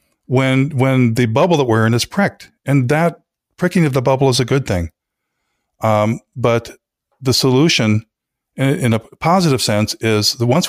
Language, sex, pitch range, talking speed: English, male, 110-150 Hz, 175 wpm